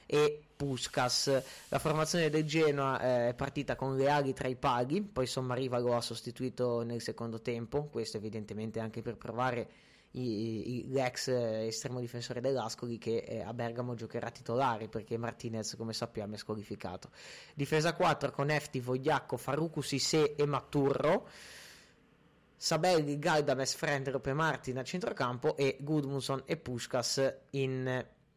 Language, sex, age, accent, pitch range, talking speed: Italian, male, 30-49, native, 120-145 Hz, 140 wpm